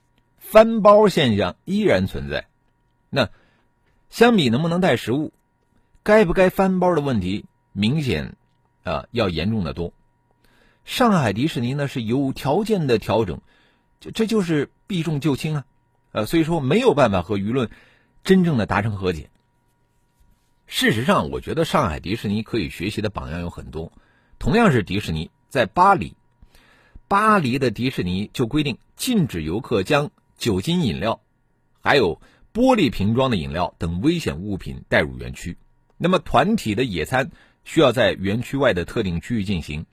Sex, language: male, Chinese